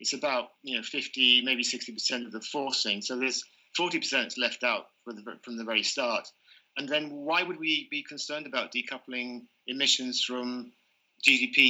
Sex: male